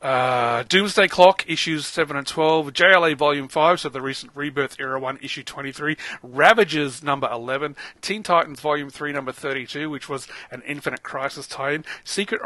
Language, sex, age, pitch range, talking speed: English, male, 30-49, 145-175 Hz, 165 wpm